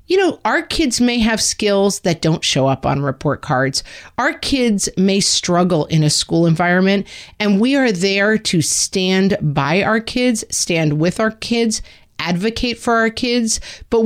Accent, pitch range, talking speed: American, 155-210 Hz, 170 wpm